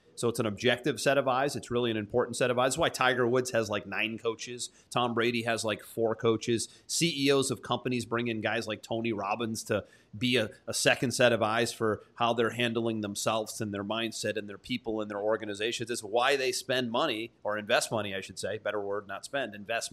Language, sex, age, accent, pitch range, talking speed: English, male, 30-49, American, 110-140 Hz, 225 wpm